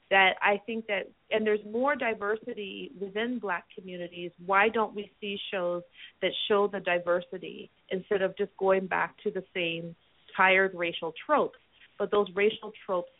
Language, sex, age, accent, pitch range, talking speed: English, female, 30-49, American, 180-220 Hz, 160 wpm